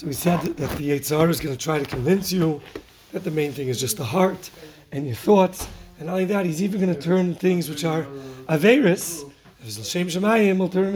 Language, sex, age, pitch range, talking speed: English, male, 30-49, 150-185 Hz, 230 wpm